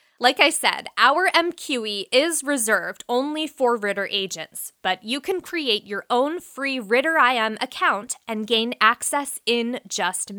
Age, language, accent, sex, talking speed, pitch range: 20-39, English, American, female, 150 wpm, 200-285 Hz